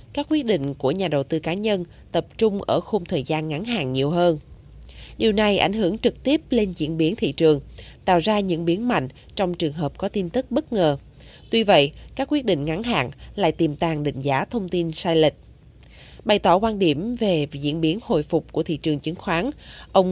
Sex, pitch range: female, 155-210 Hz